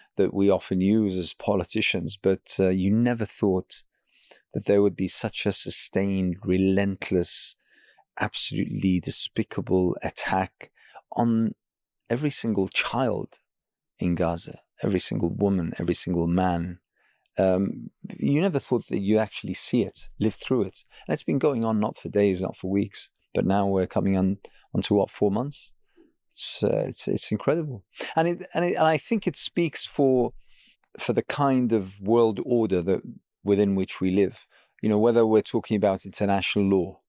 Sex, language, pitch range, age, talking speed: male, English, 95-115 Hz, 30-49, 165 wpm